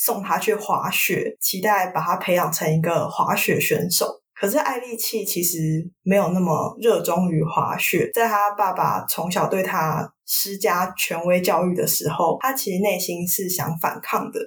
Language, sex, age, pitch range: Chinese, female, 20-39, 170-210 Hz